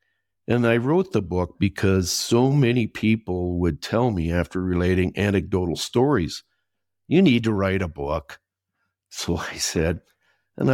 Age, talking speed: 60-79, 145 wpm